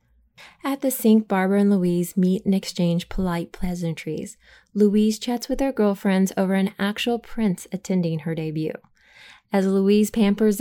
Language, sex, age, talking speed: English, female, 20-39, 145 wpm